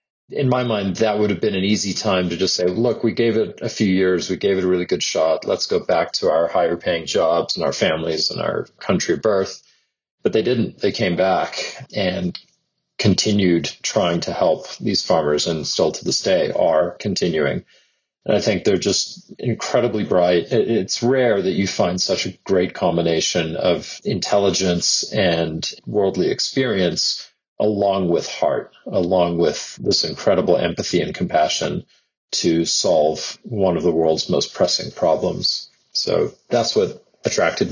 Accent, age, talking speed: American, 40-59, 170 wpm